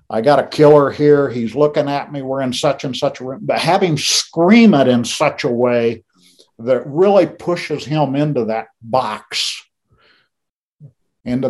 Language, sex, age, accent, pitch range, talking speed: English, male, 50-69, American, 110-140 Hz, 165 wpm